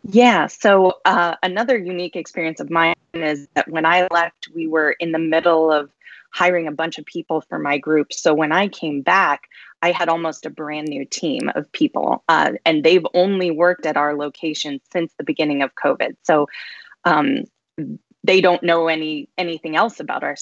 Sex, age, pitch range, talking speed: female, 20-39, 155-180 Hz, 190 wpm